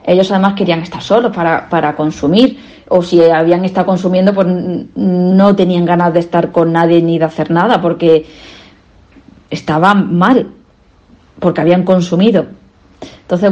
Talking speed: 140 wpm